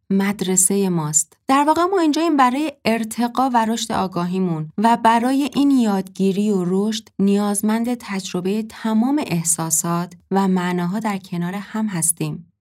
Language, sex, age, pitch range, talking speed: Persian, female, 20-39, 185-235 Hz, 135 wpm